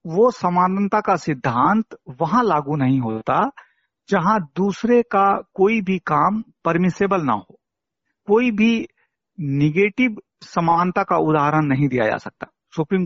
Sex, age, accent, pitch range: male, 50-69, native, 130-190 Hz